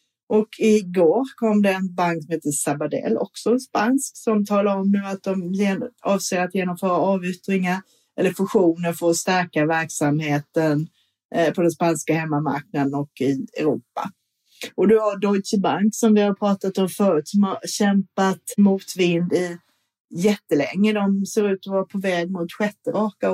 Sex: female